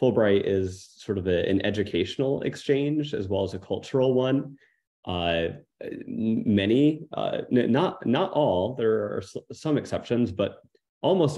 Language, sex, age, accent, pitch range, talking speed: English, male, 30-49, American, 95-125 Hz, 150 wpm